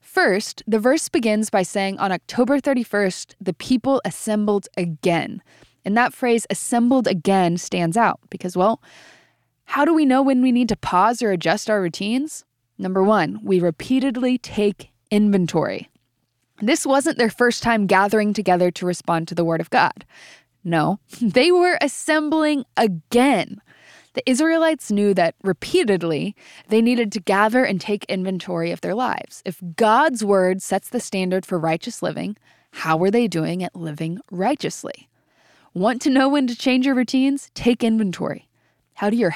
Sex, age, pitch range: female, 20-39, 180-245 Hz